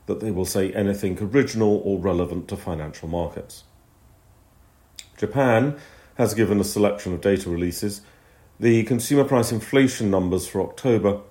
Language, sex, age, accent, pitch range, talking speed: English, male, 40-59, British, 90-105 Hz, 140 wpm